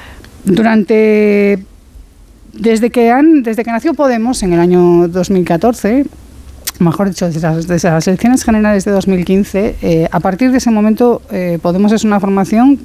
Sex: female